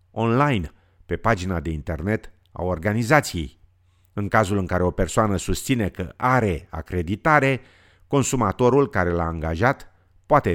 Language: Romanian